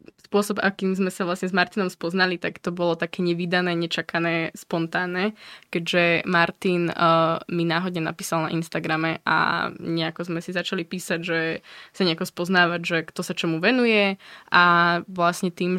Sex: female